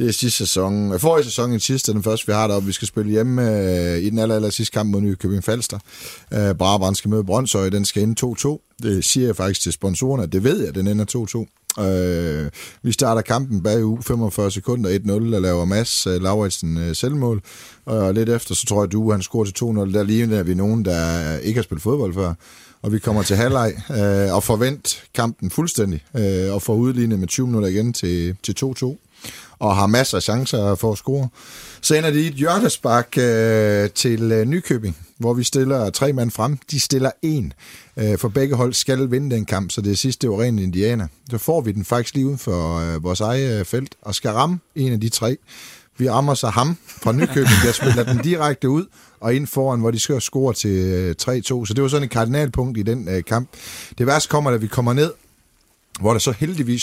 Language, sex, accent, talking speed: Danish, male, native, 225 wpm